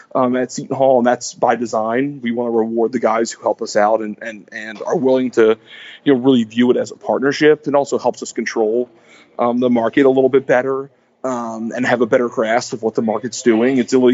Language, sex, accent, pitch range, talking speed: English, male, American, 120-150 Hz, 245 wpm